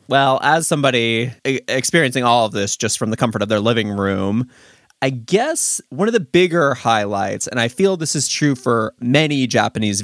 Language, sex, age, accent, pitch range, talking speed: English, male, 20-39, American, 110-140 Hz, 185 wpm